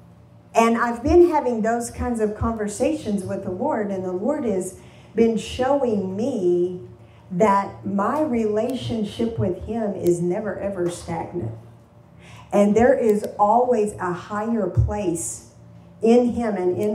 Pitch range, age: 190-245 Hz, 50-69